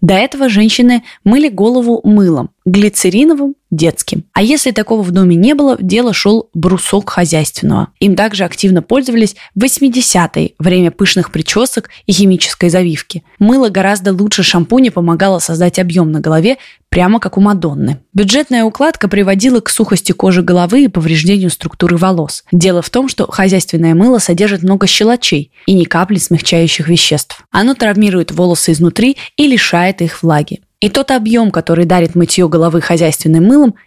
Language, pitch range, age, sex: Russian, 170-225 Hz, 20-39, female